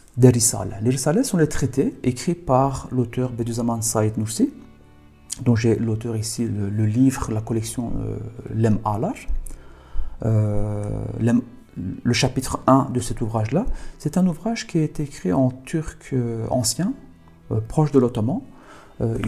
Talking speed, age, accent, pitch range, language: 150 wpm, 40-59, French, 105-130 Hz, French